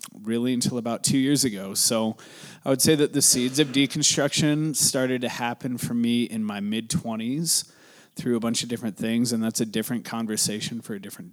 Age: 30-49